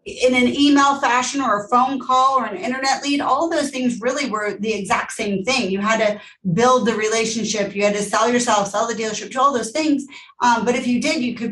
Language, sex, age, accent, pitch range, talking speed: English, female, 30-49, American, 205-245 Hz, 240 wpm